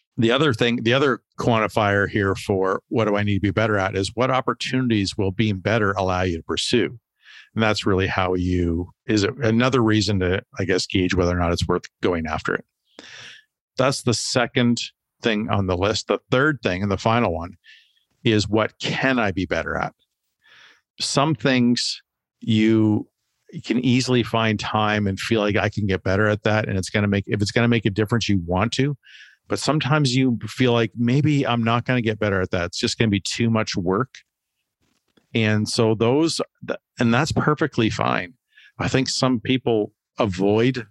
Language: English